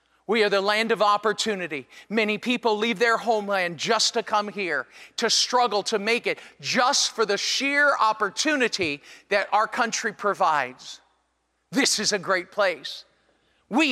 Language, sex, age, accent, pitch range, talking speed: English, male, 40-59, American, 210-265 Hz, 150 wpm